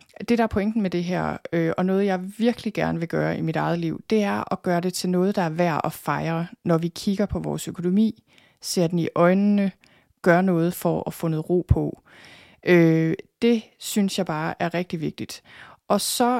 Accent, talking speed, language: native, 205 wpm, Danish